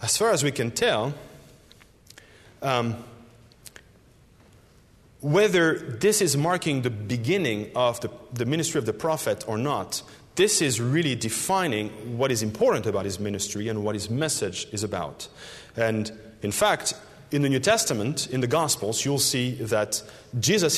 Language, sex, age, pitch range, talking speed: English, male, 40-59, 115-160 Hz, 150 wpm